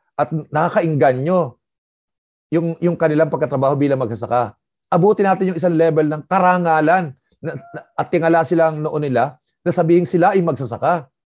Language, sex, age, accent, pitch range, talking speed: Filipino, male, 50-69, native, 145-190 Hz, 140 wpm